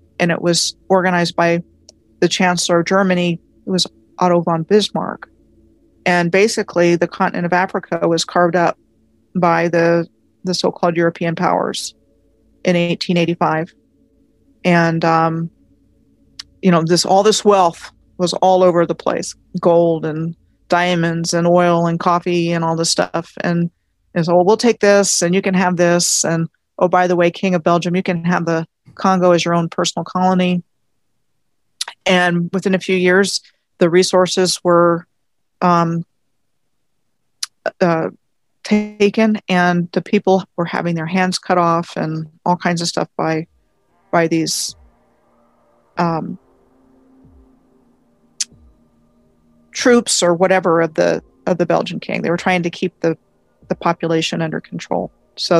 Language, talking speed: English, 145 wpm